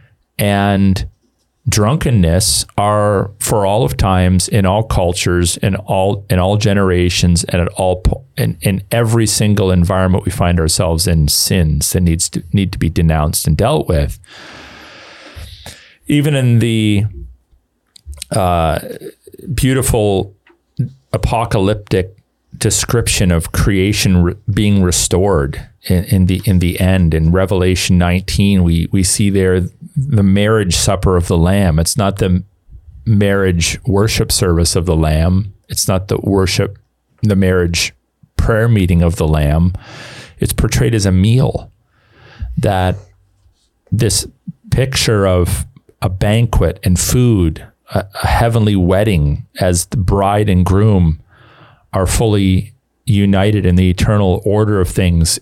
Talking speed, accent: 130 wpm, American